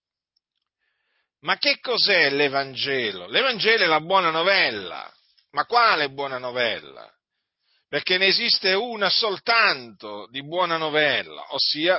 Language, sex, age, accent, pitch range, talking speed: Italian, male, 50-69, native, 155-200 Hz, 110 wpm